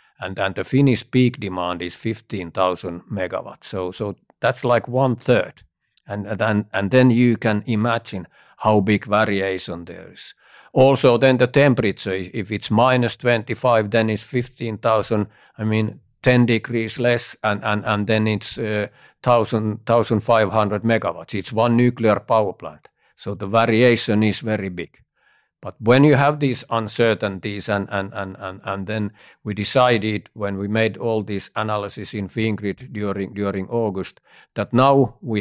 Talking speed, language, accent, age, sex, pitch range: 155 wpm, English, Finnish, 50-69, male, 100-115 Hz